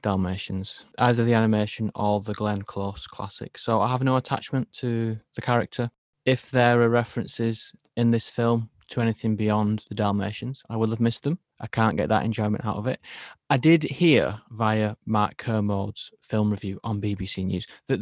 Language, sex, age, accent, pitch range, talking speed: English, male, 20-39, British, 105-120 Hz, 180 wpm